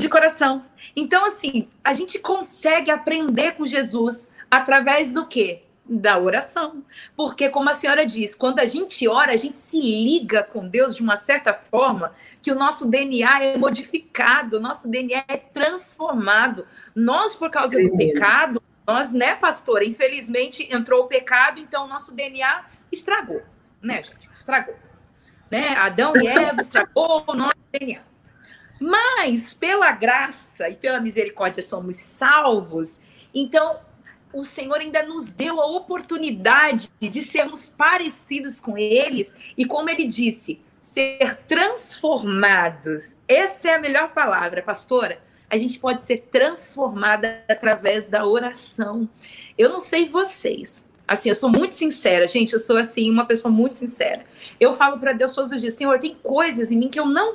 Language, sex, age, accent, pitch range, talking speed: Portuguese, female, 40-59, Brazilian, 230-300 Hz, 155 wpm